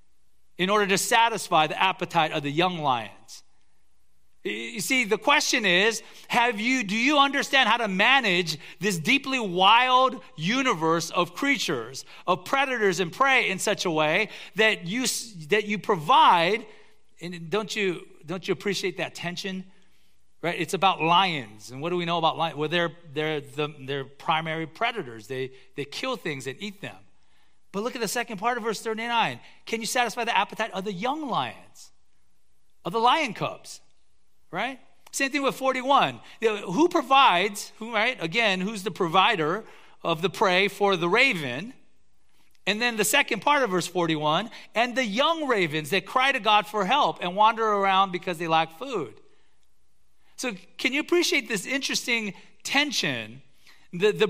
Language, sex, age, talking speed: English, male, 40-59, 165 wpm